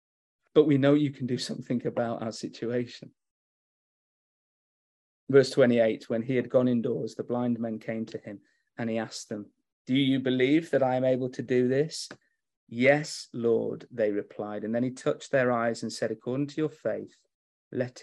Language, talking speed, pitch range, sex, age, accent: English, 180 wpm, 120-155 Hz, male, 30-49, British